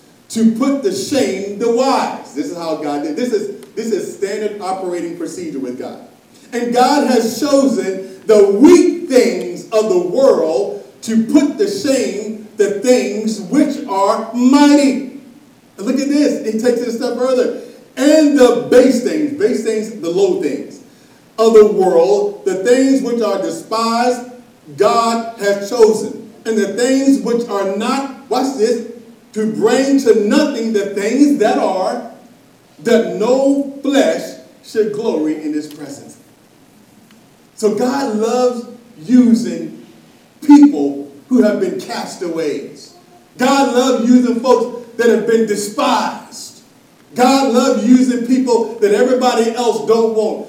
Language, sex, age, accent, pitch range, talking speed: English, male, 40-59, American, 215-265 Hz, 140 wpm